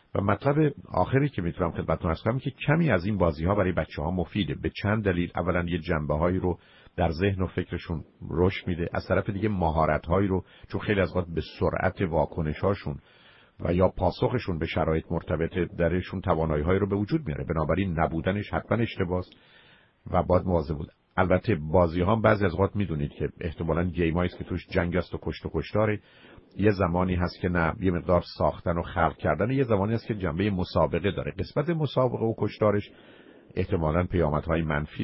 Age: 50-69